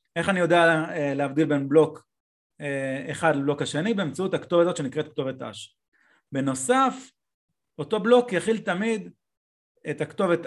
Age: 30-49